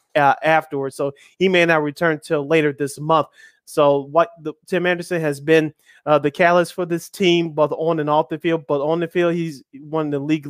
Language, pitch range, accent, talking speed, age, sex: English, 150-170 Hz, American, 225 wpm, 20-39, male